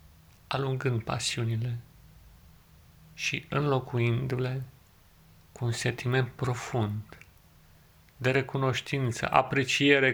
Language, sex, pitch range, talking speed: Romanian, male, 85-130 Hz, 65 wpm